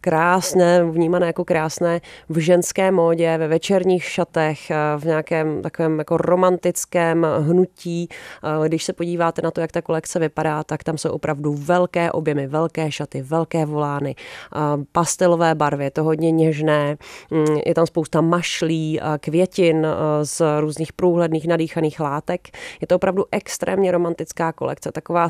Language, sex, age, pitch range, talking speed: Czech, female, 30-49, 155-175 Hz, 135 wpm